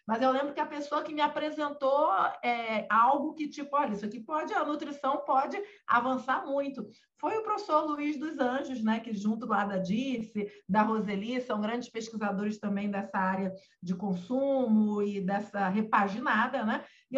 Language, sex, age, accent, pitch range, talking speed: Portuguese, female, 40-59, Brazilian, 235-280 Hz, 170 wpm